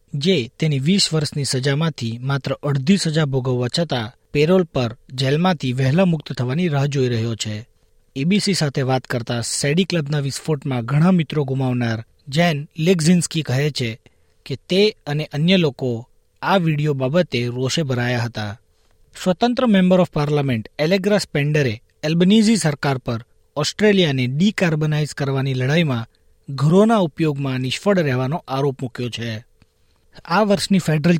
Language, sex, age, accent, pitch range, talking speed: Gujarati, male, 40-59, native, 130-175 Hz, 130 wpm